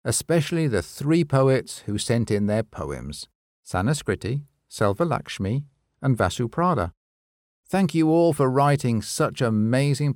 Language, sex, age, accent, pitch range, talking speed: English, male, 50-69, British, 100-145 Hz, 130 wpm